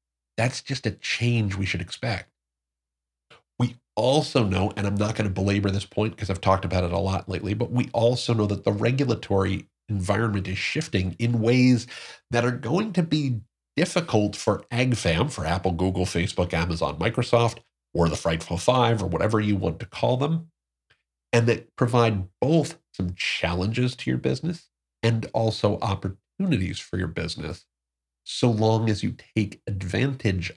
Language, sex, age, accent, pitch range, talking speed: English, male, 40-59, American, 95-120 Hz, 165 wpm